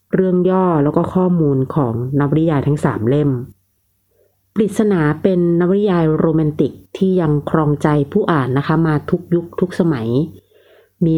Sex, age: female, 30-49